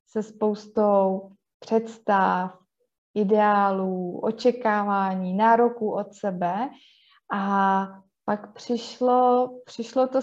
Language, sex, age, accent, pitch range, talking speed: Czech, female, 20-39, native, 195-235 Hz, 75 wpm